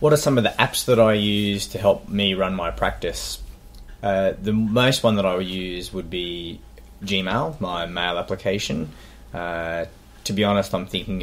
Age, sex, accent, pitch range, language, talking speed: 20-39, male, Australian, 85-95 Hz, English, 185 wpm